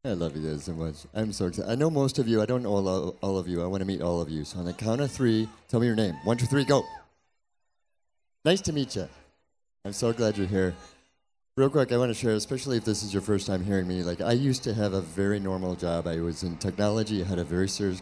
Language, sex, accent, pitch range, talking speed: English, male, American, 85-110 Hz, 275 wpm